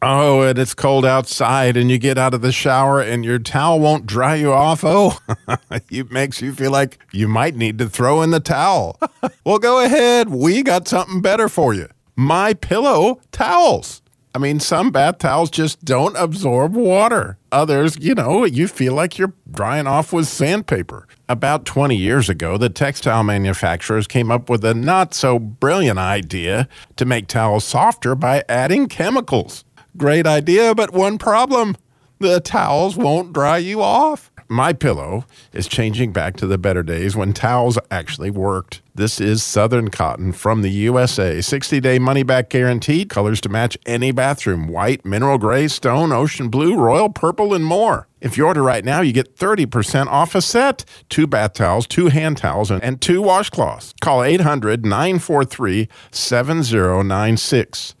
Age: 40-59